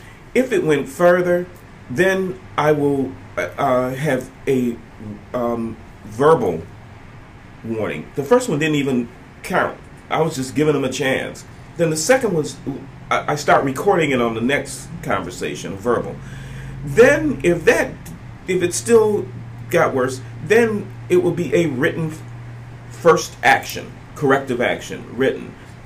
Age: 40-59